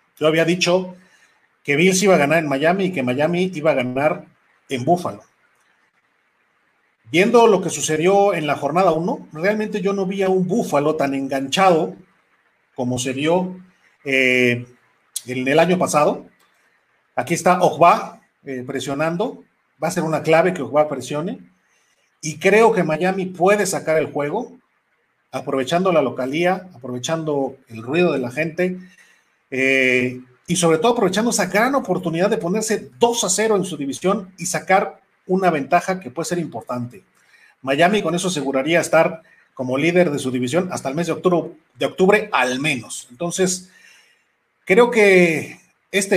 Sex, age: male, 40-59